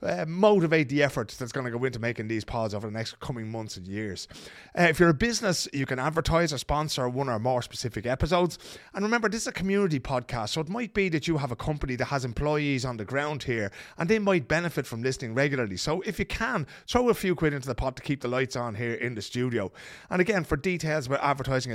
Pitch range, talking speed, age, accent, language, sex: 125-165 Hz, 250 wpm, 30-49, British, English, male